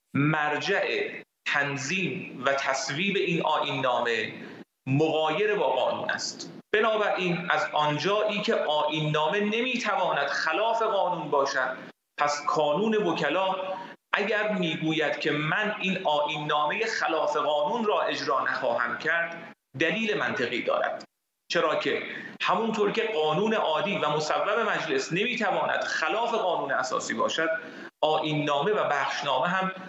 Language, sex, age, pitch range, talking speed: Persian, male, 40-59, 150-205 Hz, 120 wpm